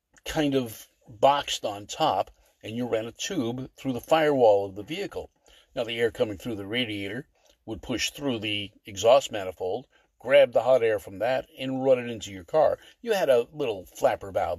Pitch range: 105-155 Hz